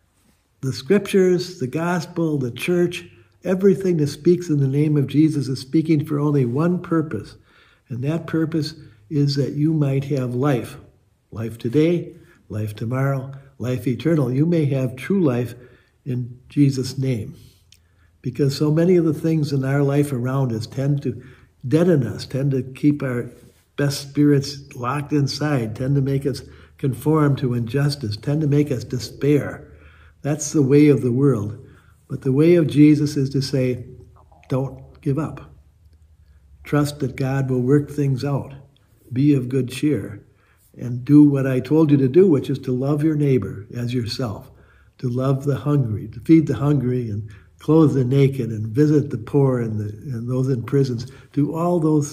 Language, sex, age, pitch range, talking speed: English, male, 60-79, 120-145 Hz, 170 wpm